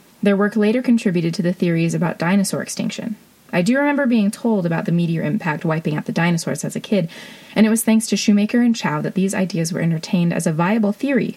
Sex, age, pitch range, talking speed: female, 30-49, 170-215 Hz, 225 wpm